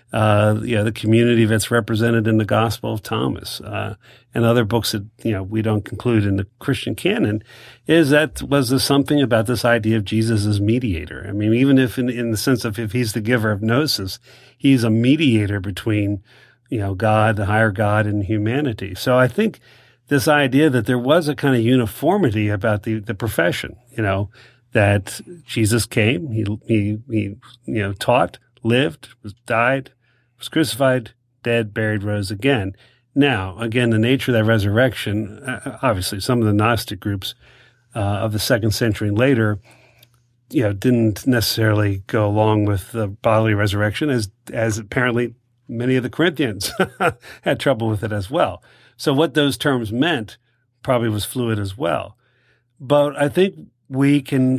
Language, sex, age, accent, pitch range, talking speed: English, male, 50-69, American, 110-130 Hz, 180 wpm